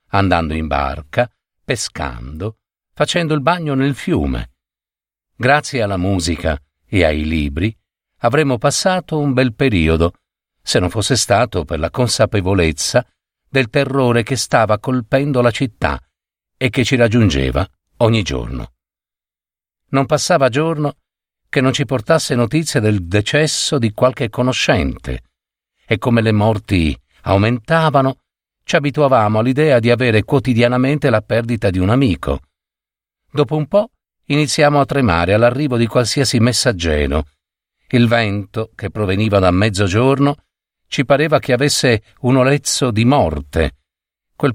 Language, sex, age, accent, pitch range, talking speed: Italian, male, 50-69, native, 95-140 Hz, 125 wpm